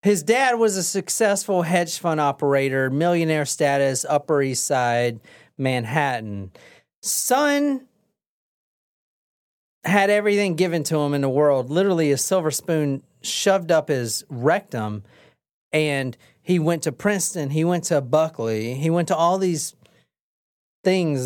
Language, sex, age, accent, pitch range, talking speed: English, male, 40-59, American, 135-200 Hz, 130 wpm